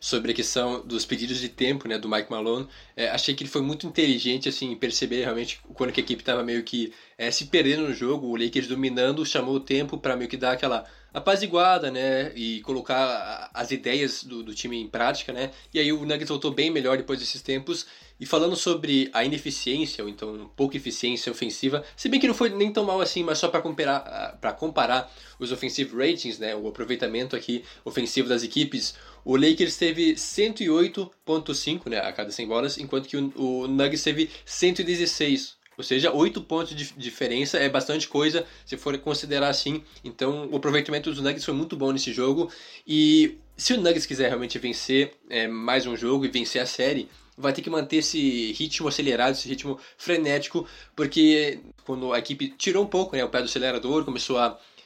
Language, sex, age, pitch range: Portuguese, male, 20-39, 125-155 Hz